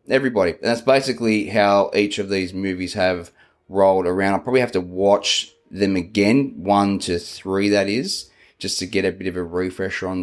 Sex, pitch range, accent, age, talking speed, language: male, 95-115 Hz, Australian, 20-39, 190 wpm, English